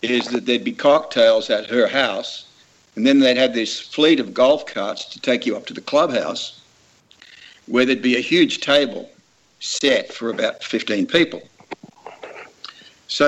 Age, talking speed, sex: 60-79, 165 wpm, male